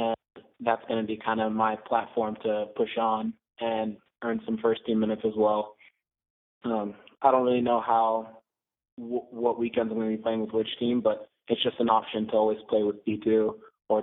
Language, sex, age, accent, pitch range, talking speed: English, male, 20-39, American, 110-120 Hz, 195 wpm